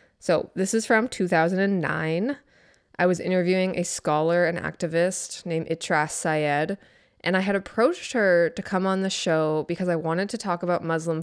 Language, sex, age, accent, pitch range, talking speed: English, female, 20-39, American, 170-225 Hz, 170 wpm